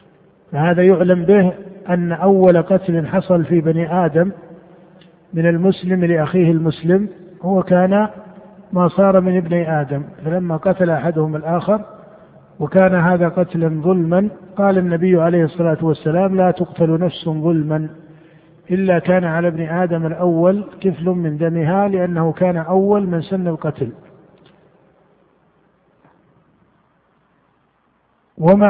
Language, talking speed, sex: Arabic, 115 wpm, male